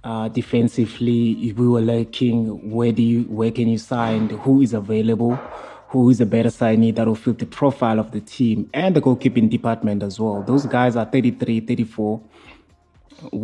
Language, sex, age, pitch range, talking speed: English, male, 20-39, 115-130 Hz, 170 wpm